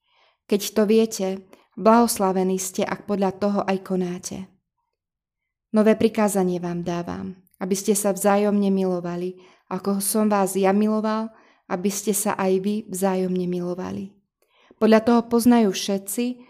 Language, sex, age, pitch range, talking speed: Slovak, female, 20-39, 185-220 Hz, 125 wpm